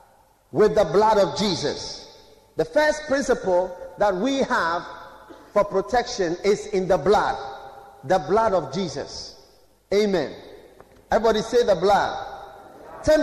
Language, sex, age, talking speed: English, male, 50-69, 120 wpm